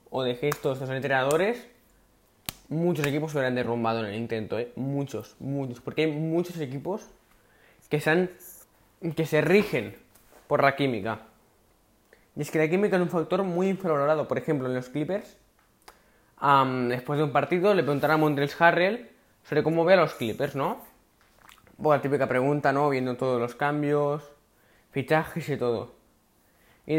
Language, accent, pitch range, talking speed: Spanish, Spanish, 125-155 Hz, 165 wpm